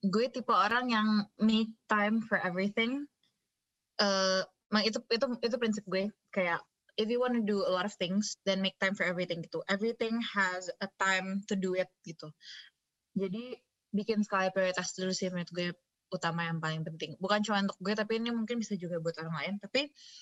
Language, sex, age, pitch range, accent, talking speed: Indonesian, female, 20-39, 185-225 Hz, native, 185 wpm